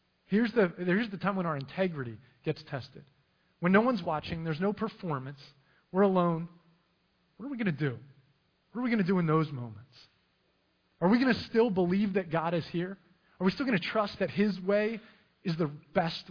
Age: 30-49